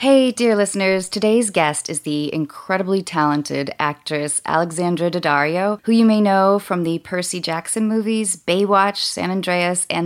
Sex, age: female, 20-39